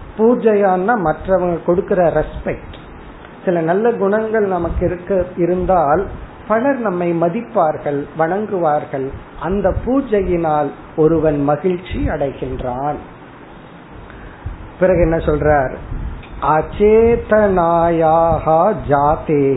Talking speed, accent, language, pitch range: 70 wpm, native, Tamil, 150-195 Hz